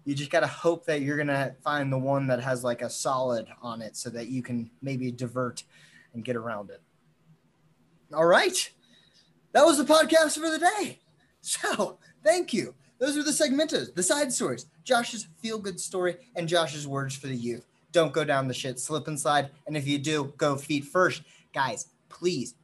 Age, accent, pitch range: 20-39, American, 135-175 Hz